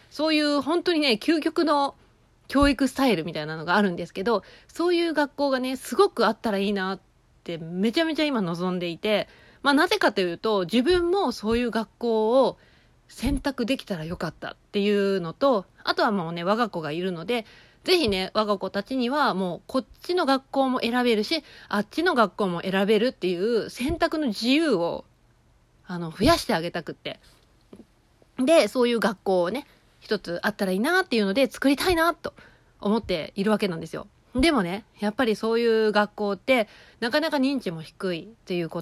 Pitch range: 185-275 Hz